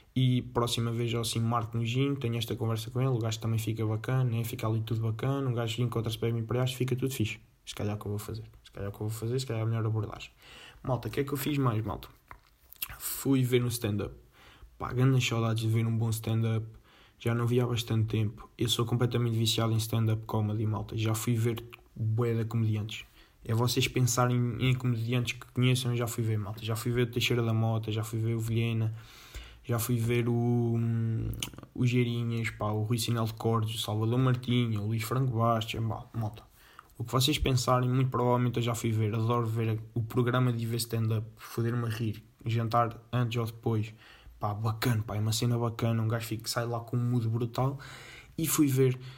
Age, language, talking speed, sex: 20-39, Portuguese, 215 wpm, male